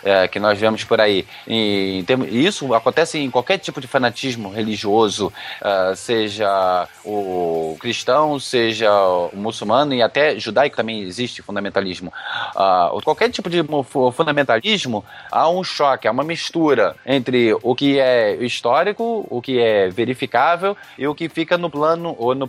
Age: 20-39